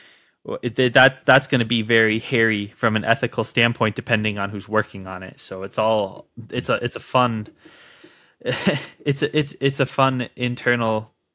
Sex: male